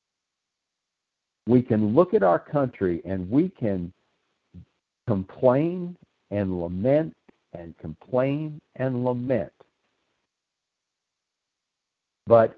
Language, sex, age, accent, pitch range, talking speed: English, male, 60-79, American, 95-125 Hz, 80 wpm